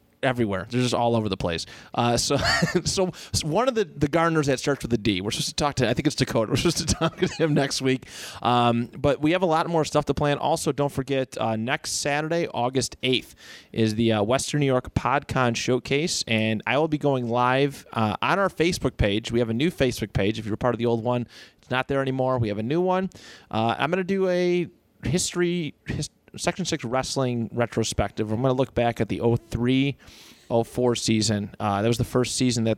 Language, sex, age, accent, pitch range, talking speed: English, male, 30-49, American, 115-150 Hz, 225 wpm